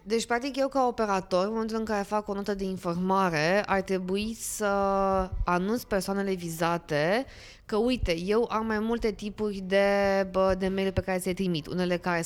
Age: 20-39